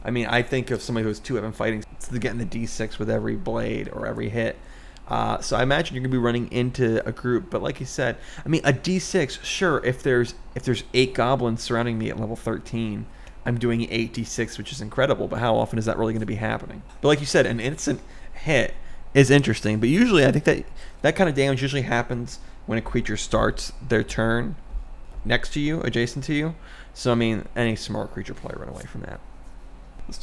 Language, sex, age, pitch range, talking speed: English, male, 20-39, 115-135 Hz, 240 wpm